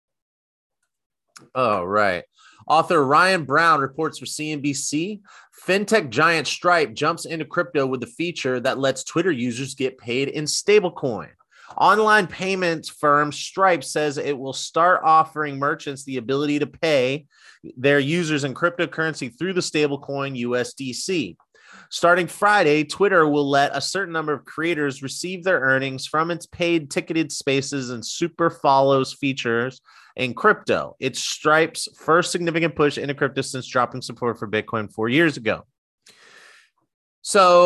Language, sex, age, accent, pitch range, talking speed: English, male, 30-49, American, 125-165 Hz, 140 wpm